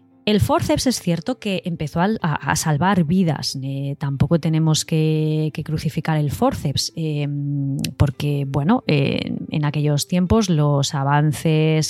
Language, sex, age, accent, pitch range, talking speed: Spanish, female, 20-39, Spanish, 140-175 Hz, 130 wpm